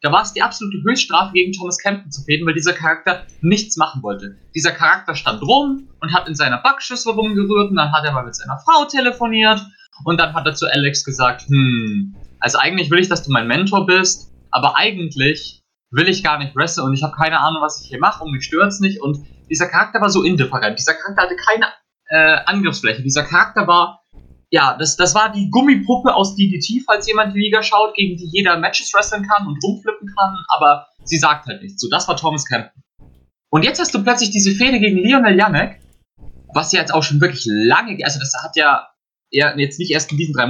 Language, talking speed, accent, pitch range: German, 220 wpm, German, 145-205 Hz